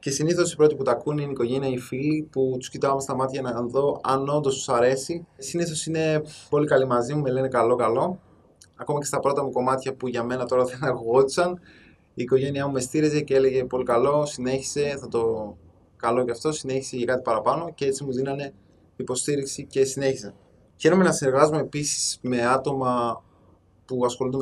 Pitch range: 125-150 Hz